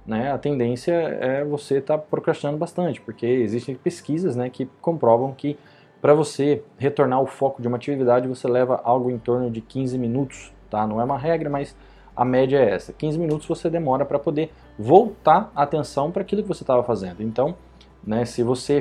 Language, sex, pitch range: Portuguese, male, 115-145 Hz